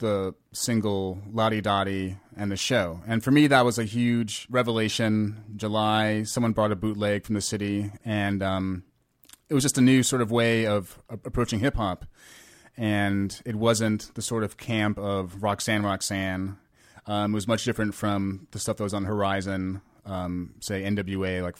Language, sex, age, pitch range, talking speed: English, male, 30-49, 95-120 Hz, 180 wpm